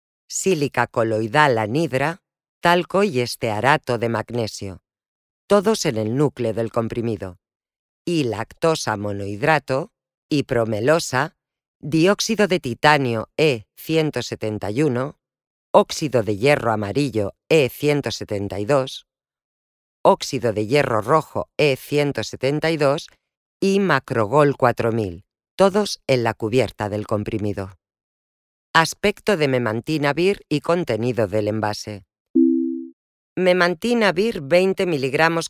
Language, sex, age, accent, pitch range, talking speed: English, female, 40-59, Spanish, 110-170 Hz, 90 wpm